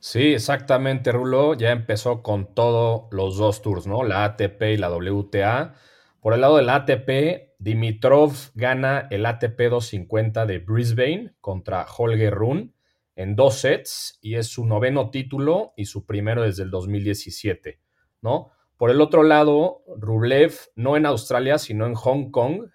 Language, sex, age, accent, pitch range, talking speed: Spanish, male, 30-49, Mexican, 105-135 Hz, 155 wpm